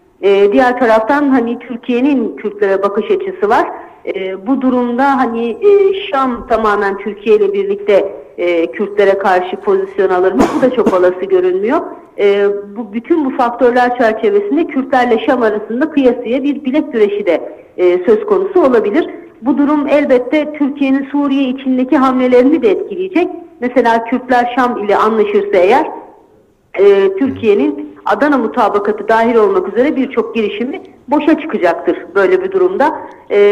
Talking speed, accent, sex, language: 140 wpm, Turkish, female, English